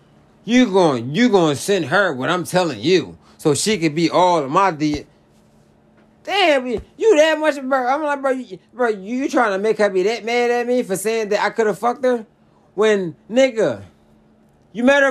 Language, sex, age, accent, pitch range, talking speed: English, male, 30-49, American, 170-245 Hz, 205 wpm